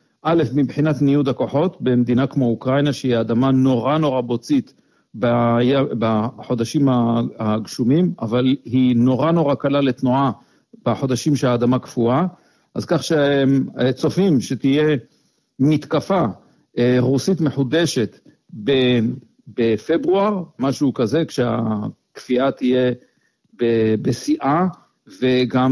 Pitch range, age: 125-155 Hz, 50-69